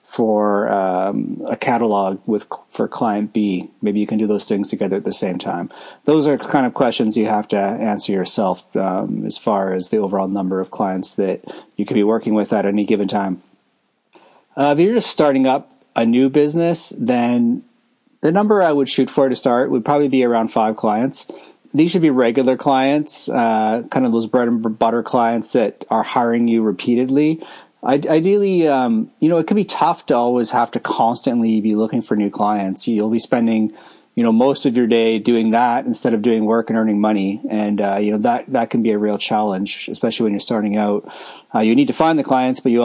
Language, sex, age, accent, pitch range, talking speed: English, male, 30-49, American, 105-135 Hz, 215 wpm